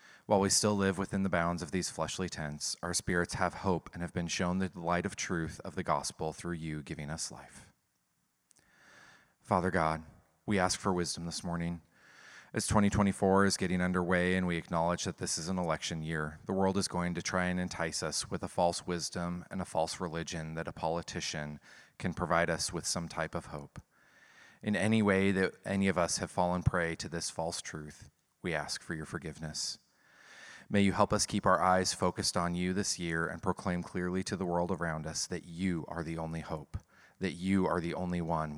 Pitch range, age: 85-95 Hz, 30-49